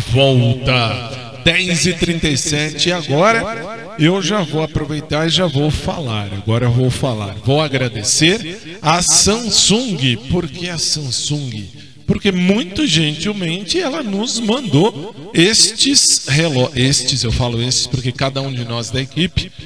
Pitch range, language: 125-165 Hz, Portuguese